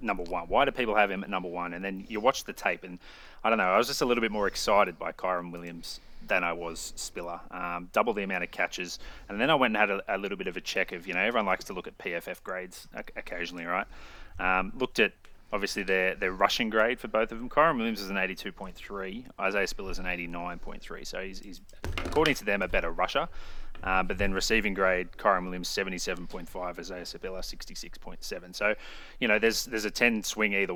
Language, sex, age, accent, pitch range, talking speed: English, male, 30-49, Australian, 90-100 Hz, 230 wpm